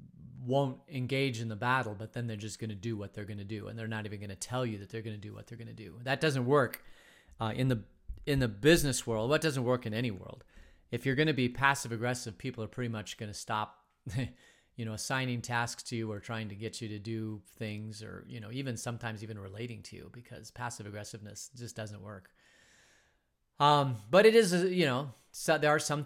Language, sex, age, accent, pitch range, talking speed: English, male, 30-49, American, 110-145 Hz, 240 wpm